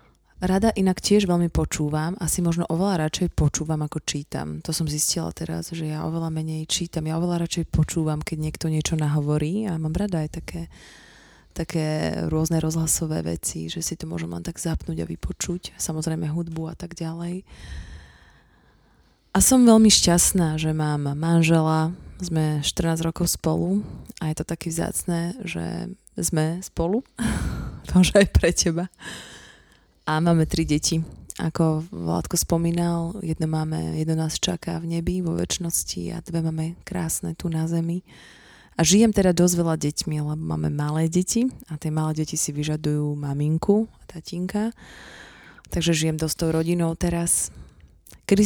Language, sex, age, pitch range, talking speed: Slovak, female, 20-39, 155-170 Hz, 155 wpm